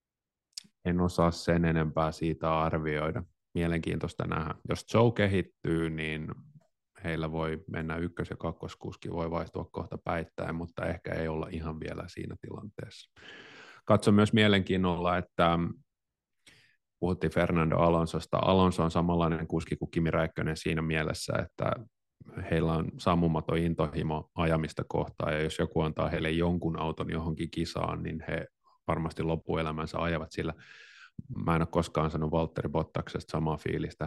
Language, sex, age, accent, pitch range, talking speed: Finnish, male, 30-49, native, 80-90 Hz, 135 wpm